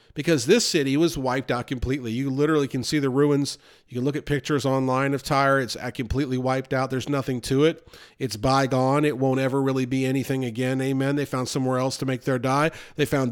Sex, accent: male, American